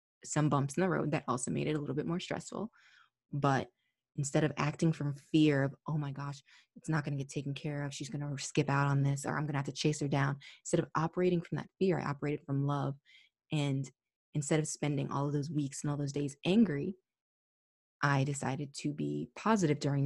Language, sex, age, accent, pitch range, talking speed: English, female, 20-39, American, 140-155 Hz, 230 wpm